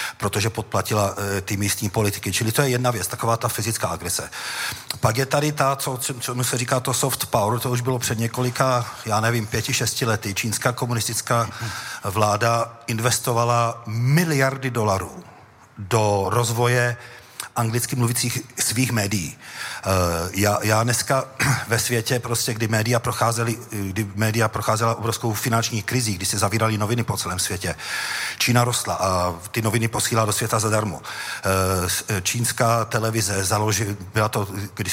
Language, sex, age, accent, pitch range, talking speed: Czech, male, 40-59, native, 105-120 Hz, 145 wpm